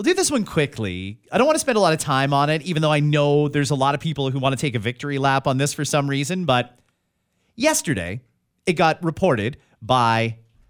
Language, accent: English, American